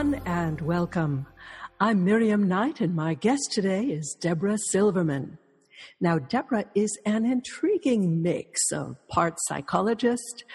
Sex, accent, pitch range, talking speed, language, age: female, American, 170-220 Hz, 120 wpm, English, 60-79